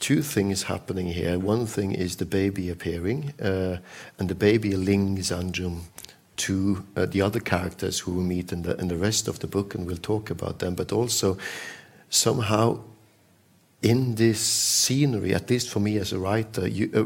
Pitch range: 95-110 Hz